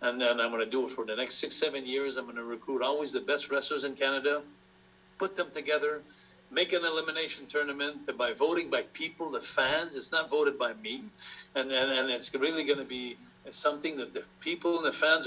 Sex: male